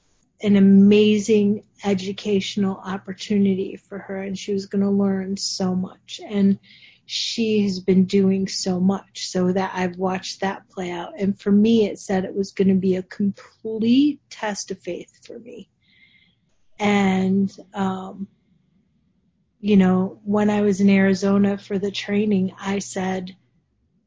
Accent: American